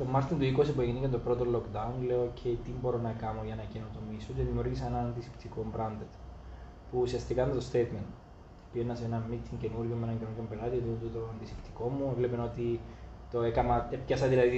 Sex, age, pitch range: male, 20-39, 115-140 Hz